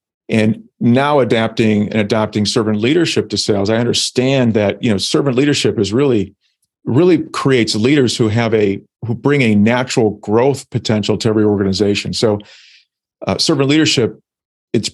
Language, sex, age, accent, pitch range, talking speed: English, male, 40-59, American, 105-130 Hz, 155 wpm